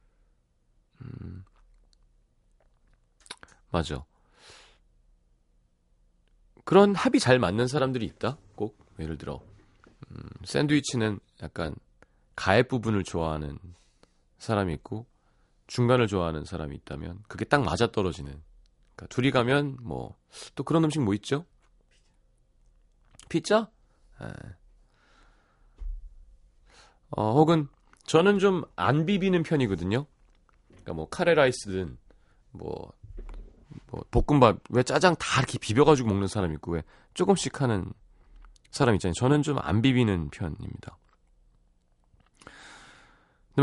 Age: 40-59